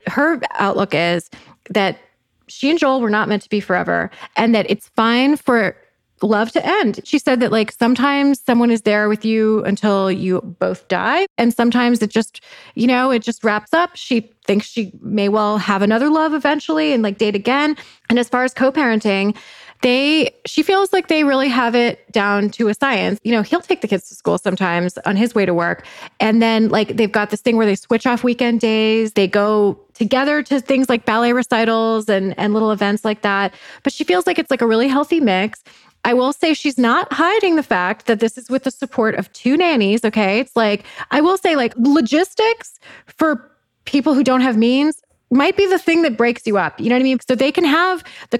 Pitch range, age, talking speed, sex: 210-270 Hz, 20-39, 220 wpm, female